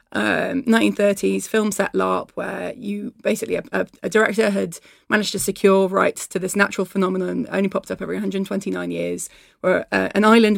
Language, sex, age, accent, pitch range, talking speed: English, female, 20-39, British, 195-225 Hz, 180 wpm